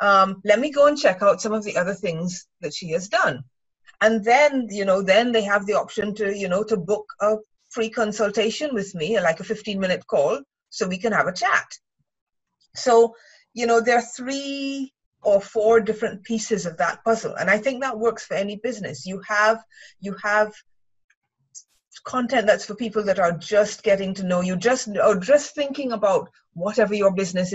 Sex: female